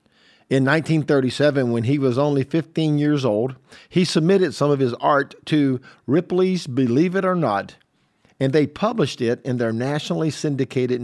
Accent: American